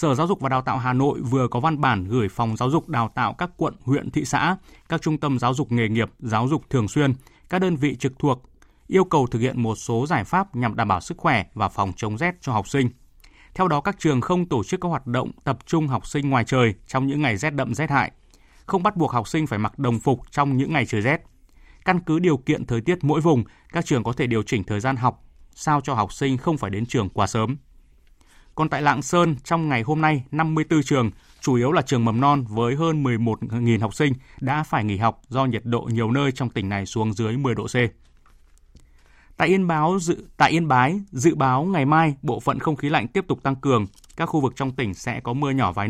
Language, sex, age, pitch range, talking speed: Vietnamese, male, 20-39, 115-155 Hz, 250 wpm